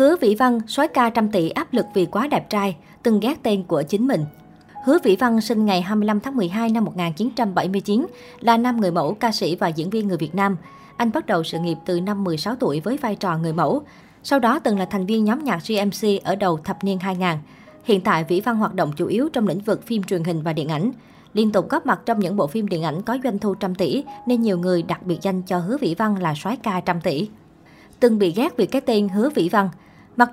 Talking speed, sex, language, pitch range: 250 wpm, male, Vietnamese, 180-235 Hz